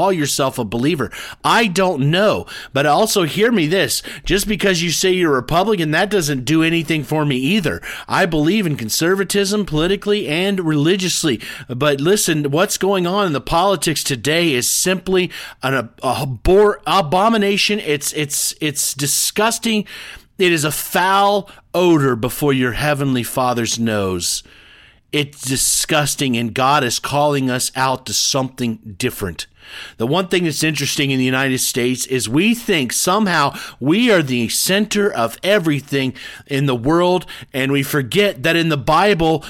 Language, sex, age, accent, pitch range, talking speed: English, male, 40-59, American, 130-180 Hz, 155 wpm